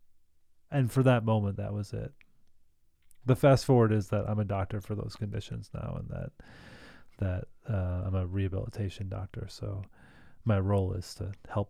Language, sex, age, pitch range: English, male, 30-49, 100-115 Hz